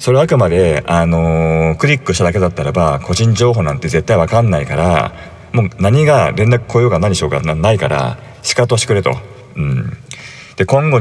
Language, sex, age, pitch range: Japanese, male, 40-59, 90-125 Hz